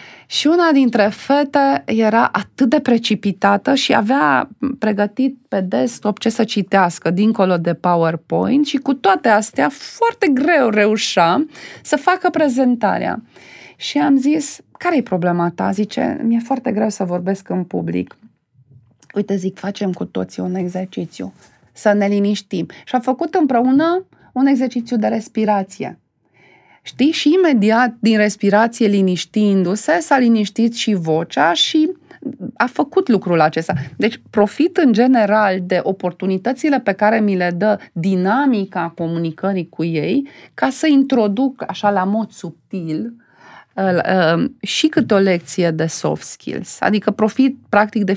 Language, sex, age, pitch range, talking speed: Romanian, female, 30-49, 185-260 Hz, 135 wpm